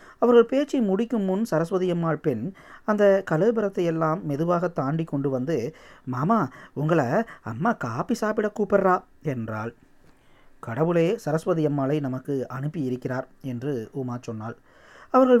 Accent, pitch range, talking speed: native, 130-180 Hz, 120 wpm